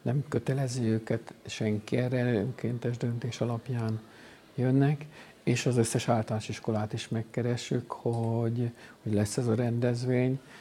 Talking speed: 125 wpm